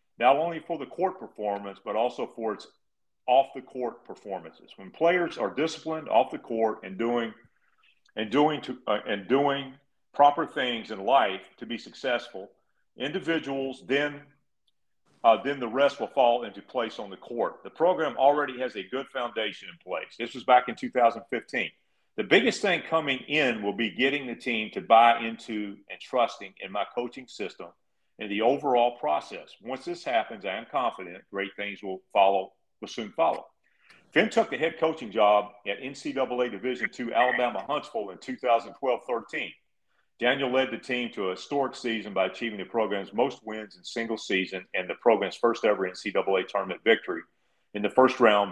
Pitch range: 105-135 Hz